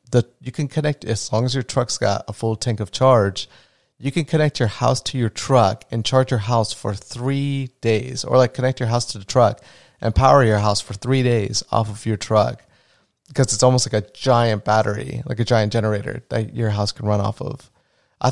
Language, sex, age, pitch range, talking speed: English, male, 30-49, 110-135 Hz, 220 wpm